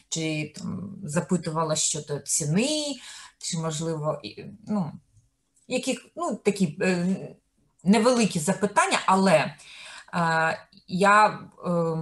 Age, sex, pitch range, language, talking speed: 30-49, female, 165-210 Hz, Ukrainian, 85 wpm